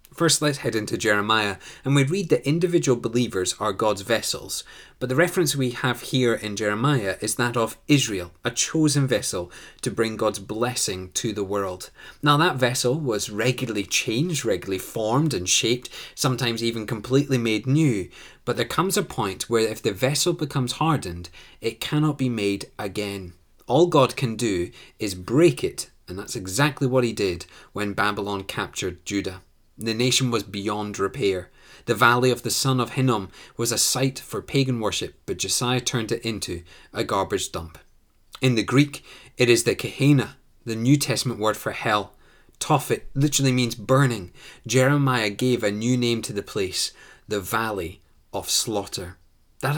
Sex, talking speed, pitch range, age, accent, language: male, 170 wpm, 105-130 Hz, 30-49, British, English